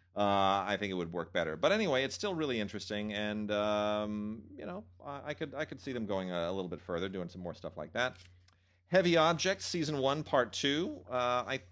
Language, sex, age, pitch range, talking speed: English, male, 40-59, 90-125 Hz, 225 wpm